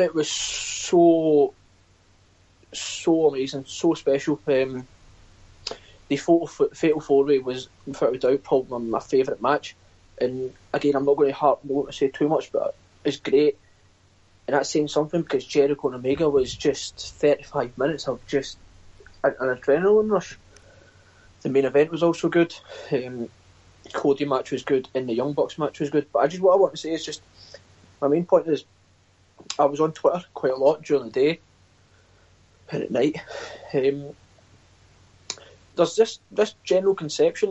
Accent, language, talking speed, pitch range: British, English, 160 wpm, 100-155 Hz